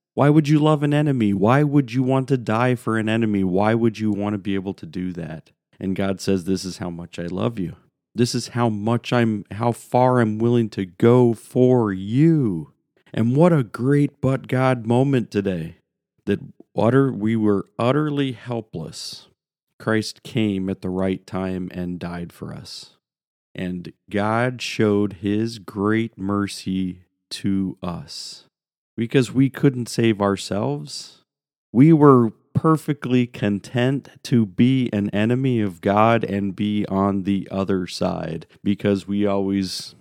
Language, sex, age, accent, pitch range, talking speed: English, male, 40-59, American, 95-125 Hz, 155 wpm